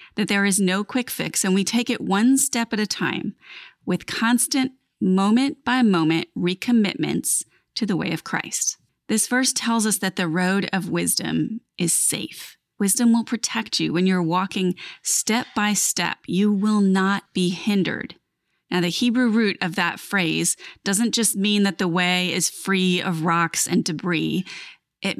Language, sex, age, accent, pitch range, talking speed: English, female, 30-49, American, 180-225 Hz, 160 wpm